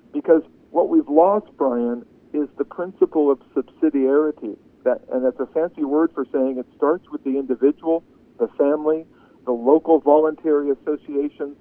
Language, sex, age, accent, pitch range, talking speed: English, male, 50-69, American, 135-160 Hz, 145 wpm